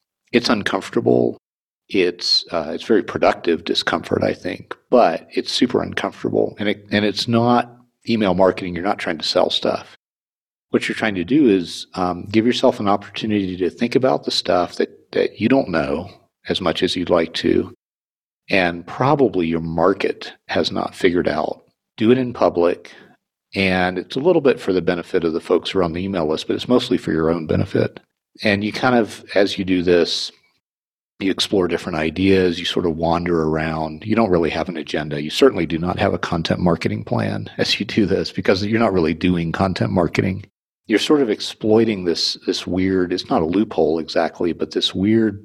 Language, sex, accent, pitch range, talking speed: English, male, American, 85-105 Hz, 195 wpm